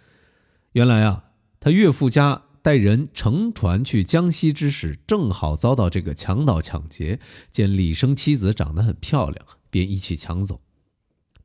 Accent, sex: native, male